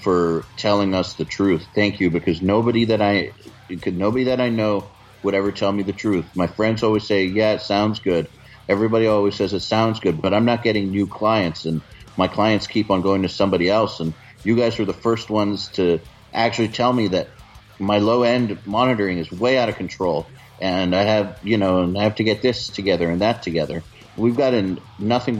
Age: 50-69